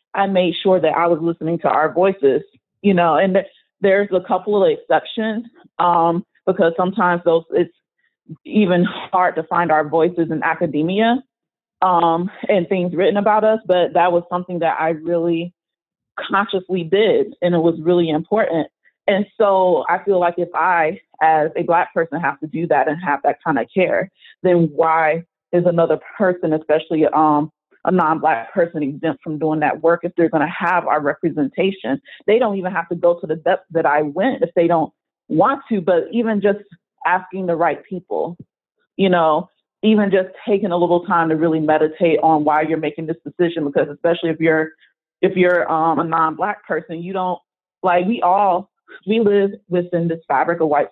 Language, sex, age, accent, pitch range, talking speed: English, female, 30-49, American, 165-190 Hz, 185 wpm